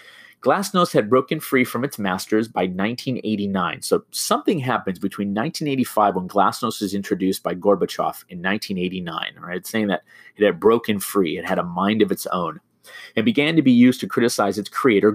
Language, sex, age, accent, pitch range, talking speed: English, male, 30-49, American, 100-130 Hz, 180 wpm